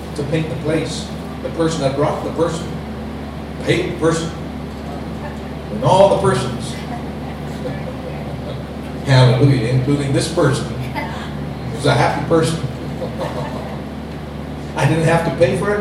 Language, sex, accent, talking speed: English, male, American, 130 wpm